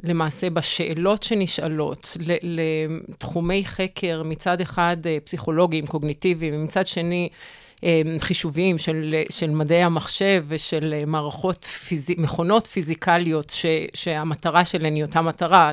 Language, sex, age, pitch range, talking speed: Hebrew, female, 40-59, 155-185 Hz, 105 wpm